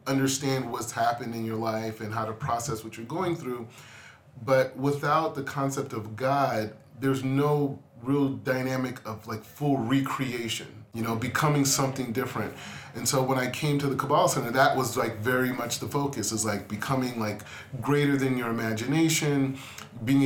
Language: English